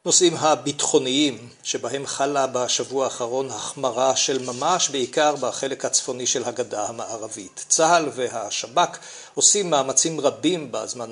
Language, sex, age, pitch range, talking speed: Hebrew, male, 50-69, 130-160 Hz, 115 wpm